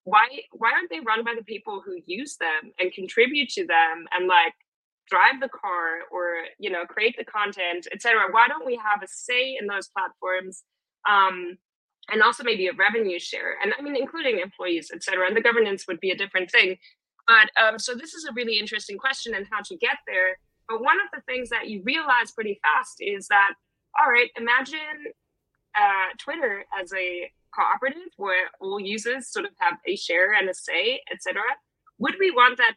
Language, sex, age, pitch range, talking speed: English, female, 20-39, 185-265 Hz, 205 wpm